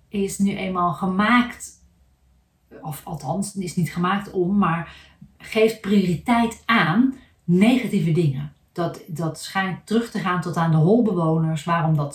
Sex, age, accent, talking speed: female, 40-59, Dutch, 140 wpm